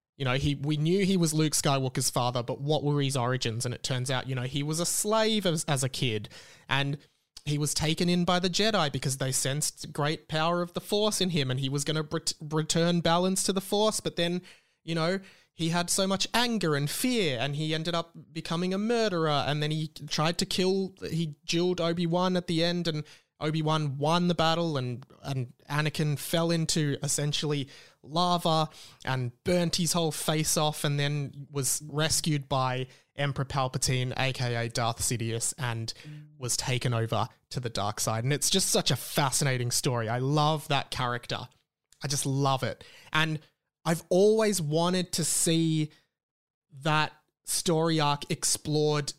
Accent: Australian